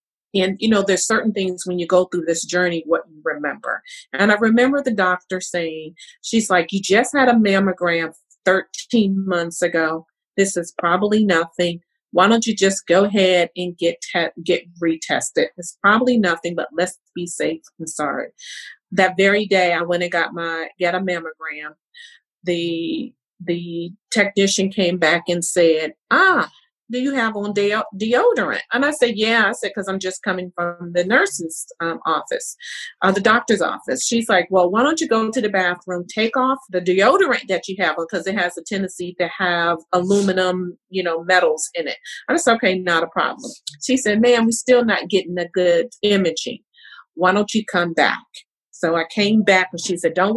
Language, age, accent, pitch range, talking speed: English, 40-59, American, 170-210 Hz, 190 wpm